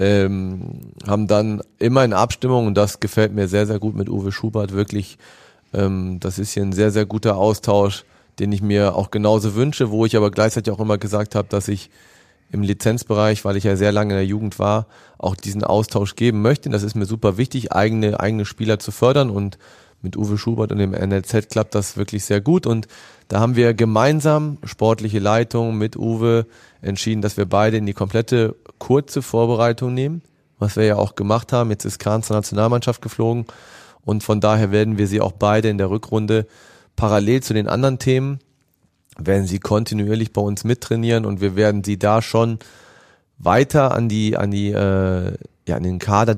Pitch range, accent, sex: 100-115 Hz, German, male